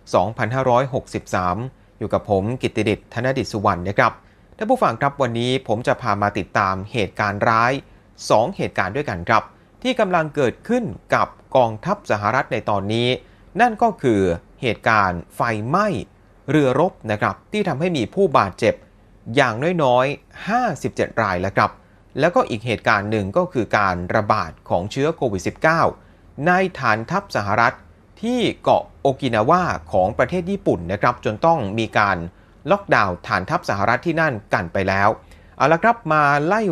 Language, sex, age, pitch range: Thai, male, 30-49, 105-170 Hz